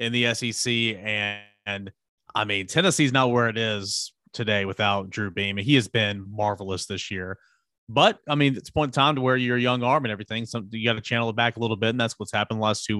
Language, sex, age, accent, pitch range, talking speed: English, male, 30-49, American, 105-120 Hz, 245 wpm